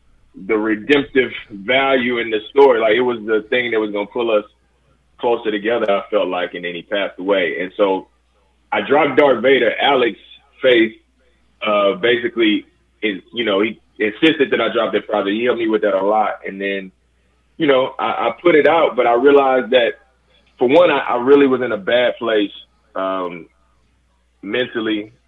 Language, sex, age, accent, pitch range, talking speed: English, male, 20-39, American, 105-130 Hz, 190 wpm